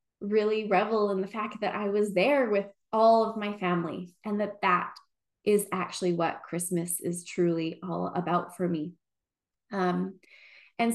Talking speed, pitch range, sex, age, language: 160 wpm, 185-245 Hz, female, 20-39, English